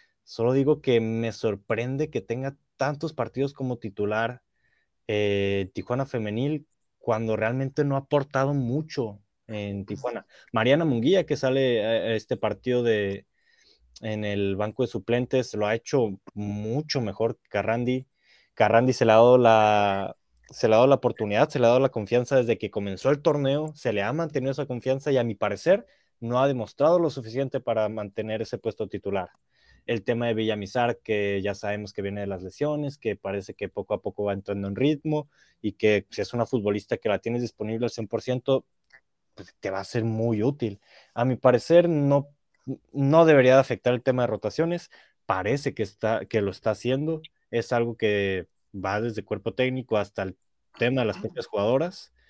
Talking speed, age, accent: 180 wpm, 20-39, Mexican